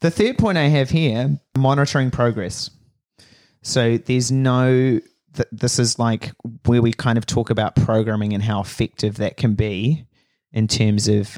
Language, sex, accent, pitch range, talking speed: English, male, Australian, 105-130 Hz, 160 wpm